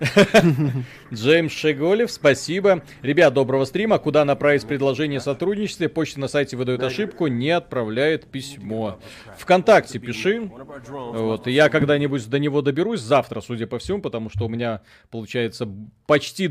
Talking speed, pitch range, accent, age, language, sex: 125 wpm, 115-150 Hz, native, 30-49, Russian, male